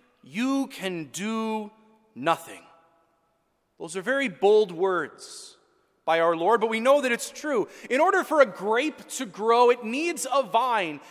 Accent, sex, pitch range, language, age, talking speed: American, male, 205-265 Hz, English, 30-49, 155 wpm